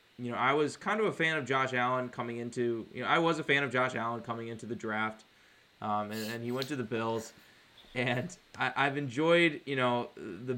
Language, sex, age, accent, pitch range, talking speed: English, male, 20-39, American, 115-130 Hz, 240 wpm